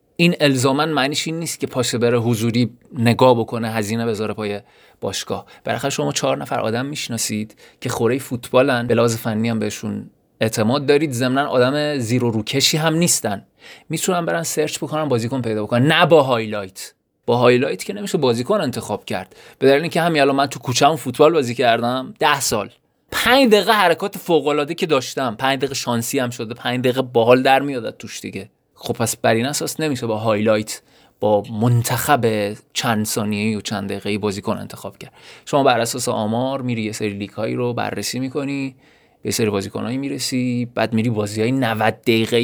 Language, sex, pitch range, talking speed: Persian, male, 115-140 Hz, 175 wpm